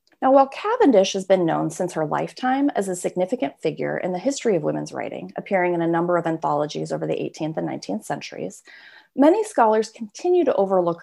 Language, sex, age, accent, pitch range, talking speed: English, female, 30-49, American, 160-235 Hz, 195 wpm